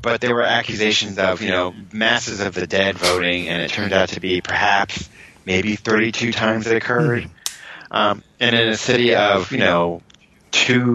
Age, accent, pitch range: 30-49, American, 95-115 Hz